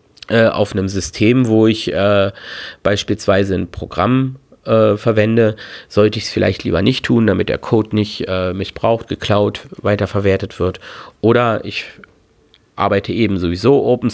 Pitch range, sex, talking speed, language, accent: 95-115 Hz, male, 140 wpm, German, German